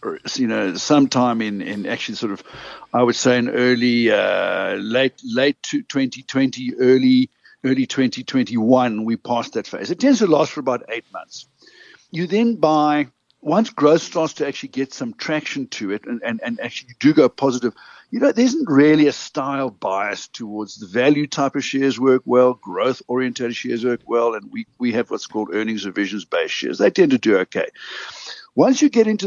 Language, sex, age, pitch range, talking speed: English, male, 60-79, 125-200 Hz, 195 wpm